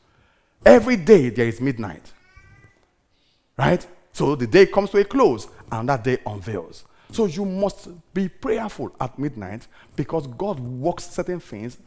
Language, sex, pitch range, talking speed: English, male, 110-165 Hz, 145 wpm